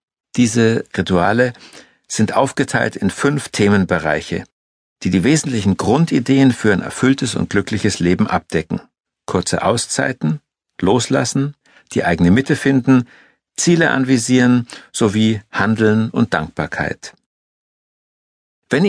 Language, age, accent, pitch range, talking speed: German, 60-79, German, 95-130 Hz, 100 wpm